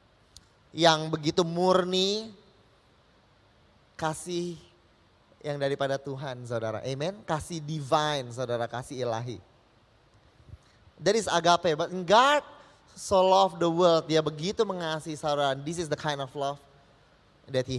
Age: 20-39